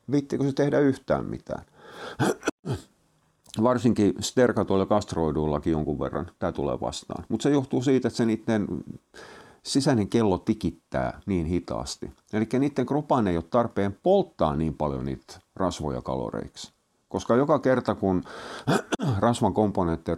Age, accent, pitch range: 50-69, native, 75-115 Hz